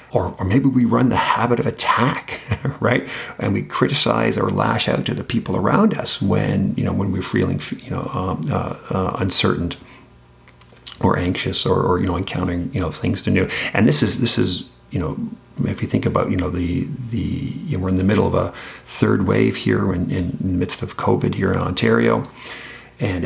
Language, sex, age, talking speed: English, male, 40-59, 210 wpm